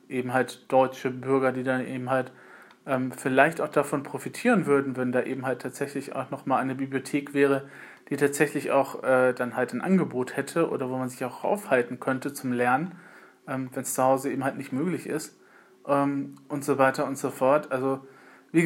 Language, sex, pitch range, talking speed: German, male, 130-160 Hz, 195 wpm